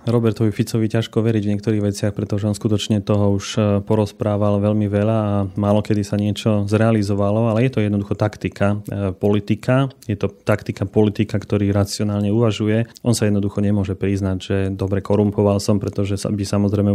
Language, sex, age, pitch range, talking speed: Slovak, male, 30-49, 105-115 Hz, 165 wpm